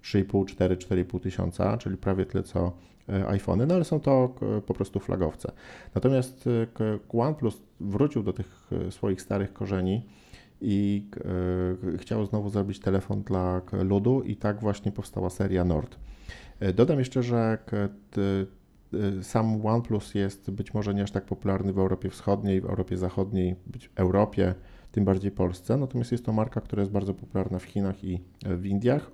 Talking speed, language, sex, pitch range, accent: 155 wpm, Polish, male, 95-110 Hz, native